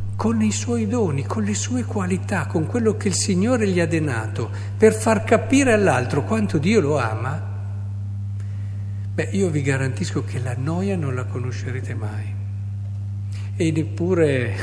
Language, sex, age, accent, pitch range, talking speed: Italian, male, 60-79, native, 100-115 Hz, 150 wpm